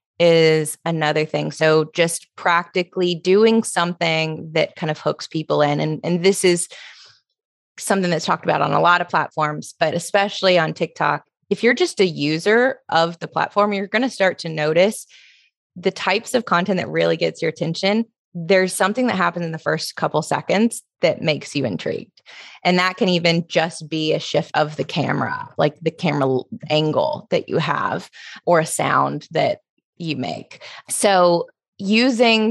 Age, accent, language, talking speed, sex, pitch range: 20-39, American, English, 170 wpm, female, 155-190 Hz